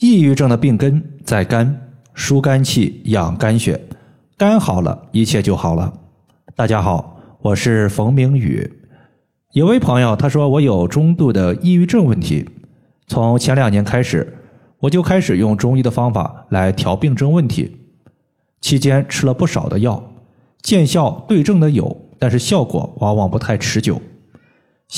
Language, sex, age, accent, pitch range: Chinese, male, 20-39, native, 110-140 Hz